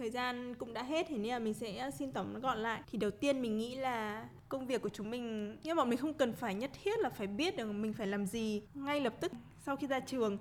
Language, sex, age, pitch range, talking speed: Vietnamese, female, 20-39, 215-260 Hz, 280 wpm